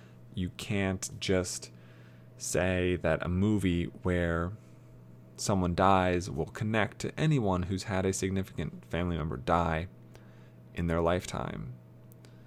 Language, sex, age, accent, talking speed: English, male, 20-39, American, 115 wpm